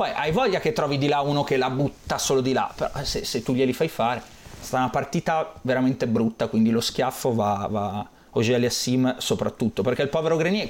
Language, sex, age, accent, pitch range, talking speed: Italian, male, 30-49, native, 125-150 Hz, 210 wpm